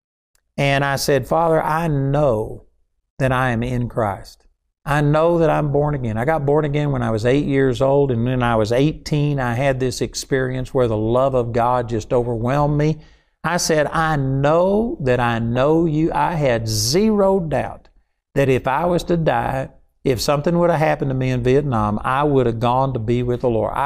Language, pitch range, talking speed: English, 125-160 Hz, 200 wpm